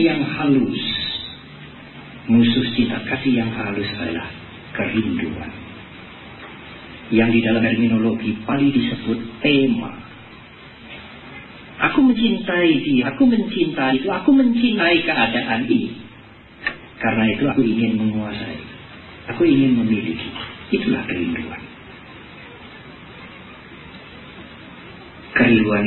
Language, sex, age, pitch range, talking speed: English, male, 40-59, 105-155 Hz, 85 wpm